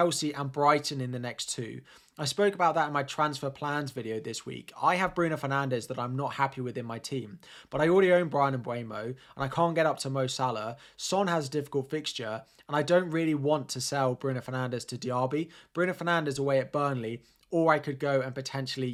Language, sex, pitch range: English, male, 125-150 Hz